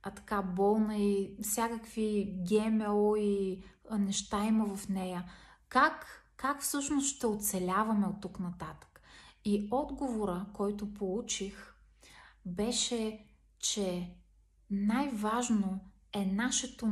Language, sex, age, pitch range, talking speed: Bulgarian, female, 30-49, 200-235 Hz, 100 wpm